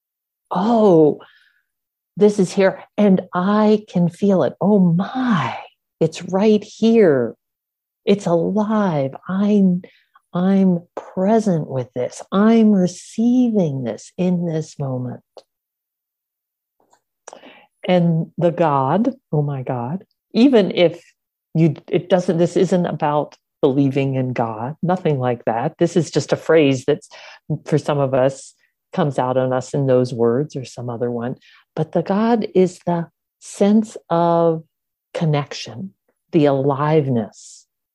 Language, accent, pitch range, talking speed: English, American, 140-190 Hz, 125 wpm